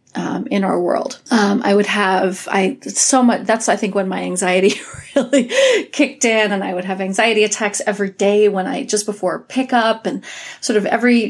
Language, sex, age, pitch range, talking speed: English, female, 30-49, 195-235 Hz, 195 wpm